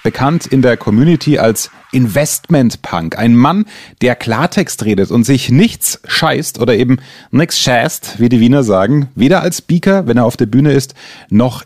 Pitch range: 115-165 Hz